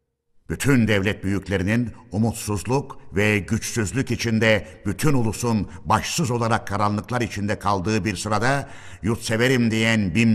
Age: 60-79